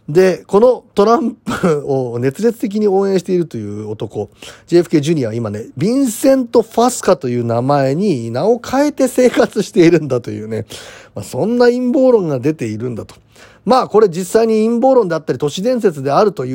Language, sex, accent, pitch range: Japanese, male, native, 130-220 Hz